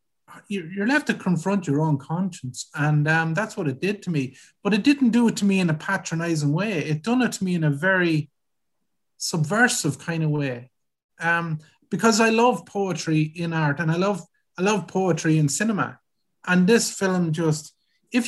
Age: 30-49